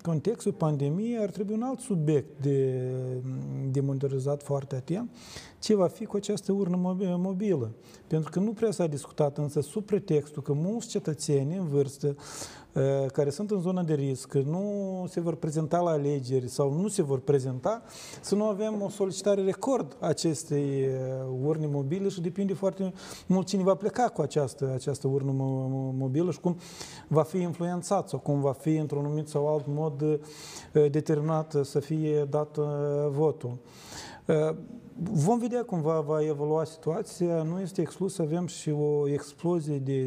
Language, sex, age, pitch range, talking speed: Romanian, male, 40-59, 140-175 Hz, 155 wpm